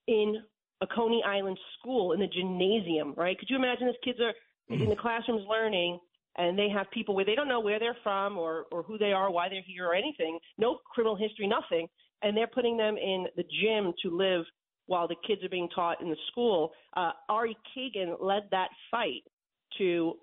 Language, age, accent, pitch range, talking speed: English, 40-59, American, 175-225 Hz, 205 wpm